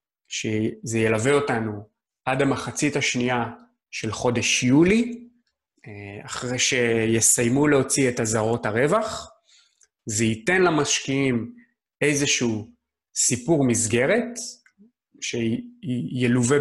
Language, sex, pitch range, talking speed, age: Hebrew, male, 110-140 Hz, 80 wpm, 30-49